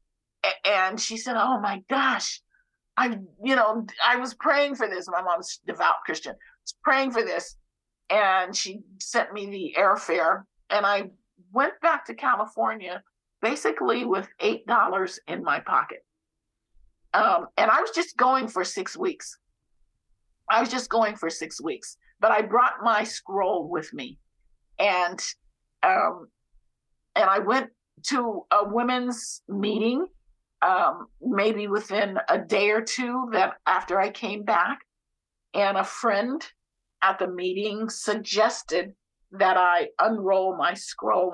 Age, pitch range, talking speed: 50-69, 190-240 Hz, 145 wpm